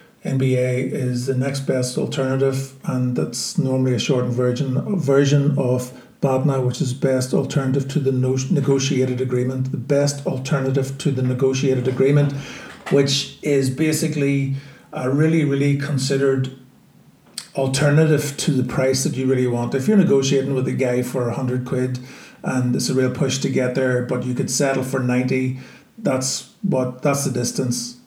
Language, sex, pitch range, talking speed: English, male, 130-145 Hz, 165 wpm